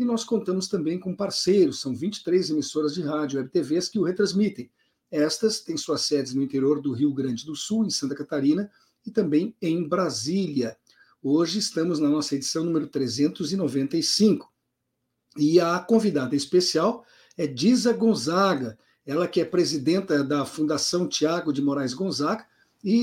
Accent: Brazilian